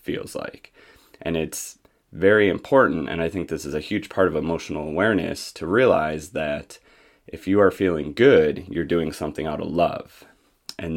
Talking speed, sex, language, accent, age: 175 wpm, male, English, American, 30-49